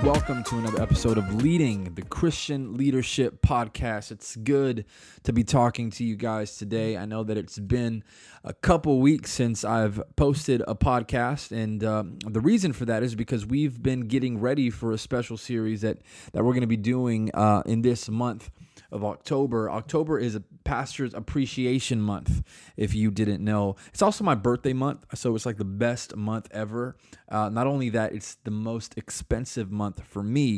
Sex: male